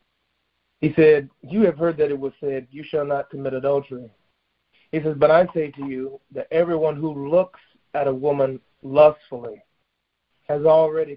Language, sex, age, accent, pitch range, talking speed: English, male, 40-59, American, 130-165 Hz, 165 wpm